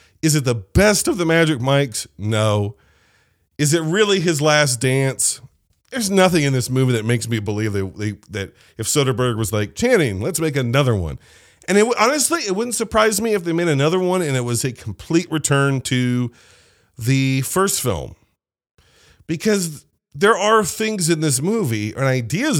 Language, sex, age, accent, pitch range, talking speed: English, male, 40-59, American, 105-160 Hz, 180 wpm